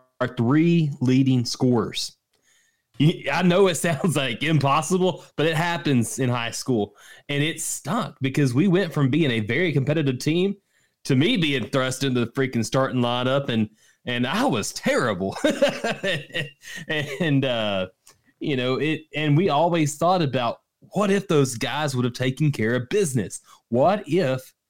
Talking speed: 155 wpm